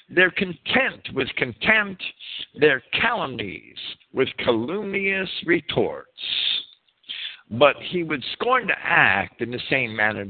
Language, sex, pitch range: English, male, 120-190 Hz